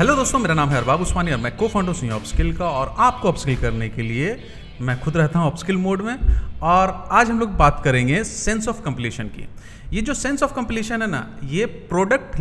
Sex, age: male, 40-59